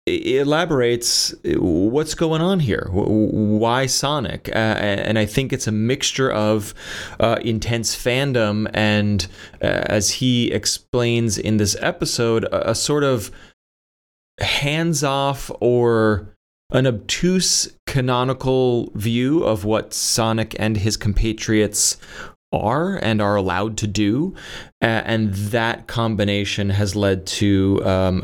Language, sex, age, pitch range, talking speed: English, male, 30-49, 100-120 Hz, 120 wpm